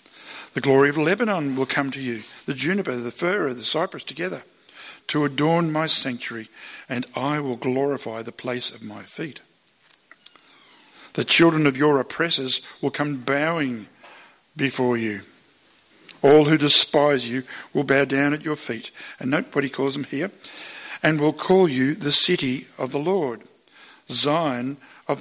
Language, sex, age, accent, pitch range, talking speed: English, male, 50-69, Australian, 125-150 Hz, 155 wpm